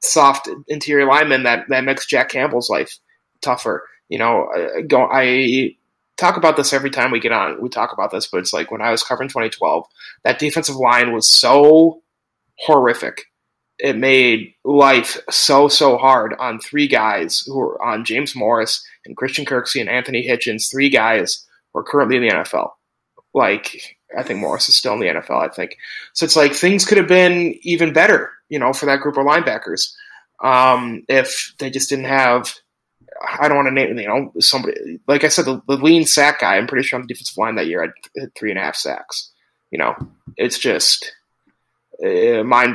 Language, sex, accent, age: English, male, American, 20-39